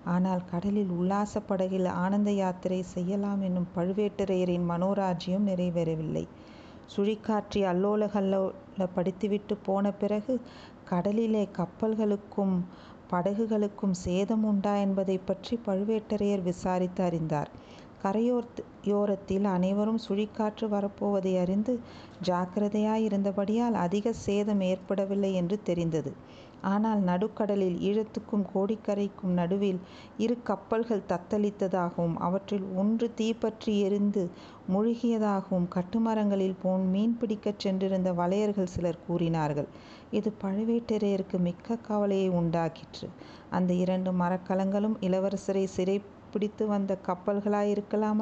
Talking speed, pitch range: 90 wpm, 185-210 Hz